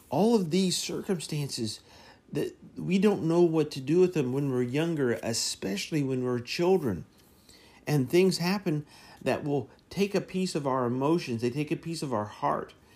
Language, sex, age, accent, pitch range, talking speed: English, male, 50-69, American, 115-175 Hz, 175 wpm